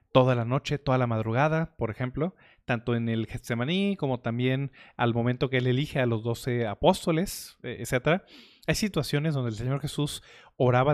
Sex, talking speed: male, 170 wpm